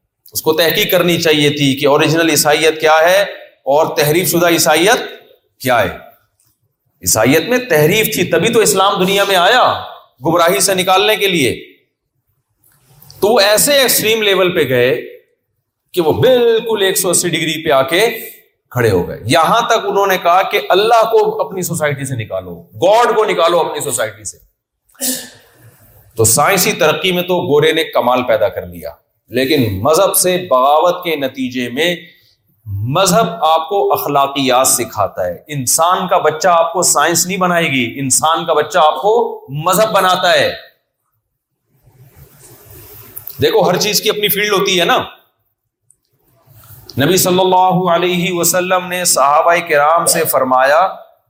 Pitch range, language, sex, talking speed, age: 130-190 Hz, Urdu, male, 150 wpm, 40-59